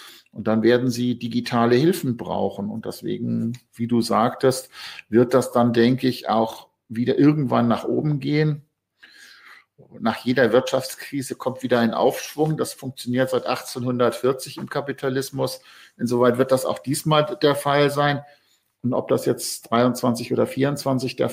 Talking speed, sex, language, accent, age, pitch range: 145 wpm, male, German, German, 50-69, 115-140 Hz